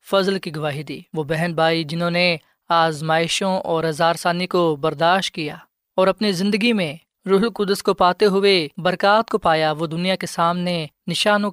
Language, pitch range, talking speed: Urdu, 155-180 Hz, 165 wpm